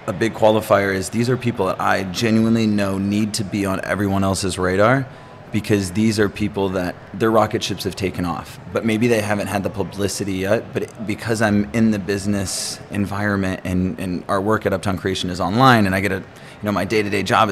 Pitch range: 95-110 Hz